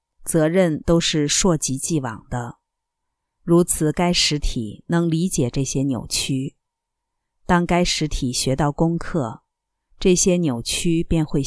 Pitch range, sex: 145-235 Hz, female